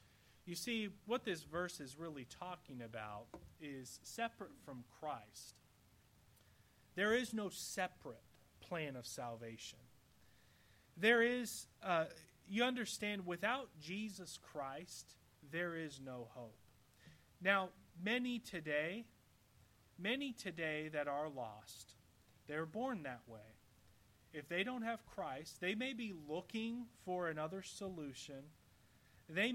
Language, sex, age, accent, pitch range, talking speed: English, male, 30-49, American, 125-205 Hz, 115 wpm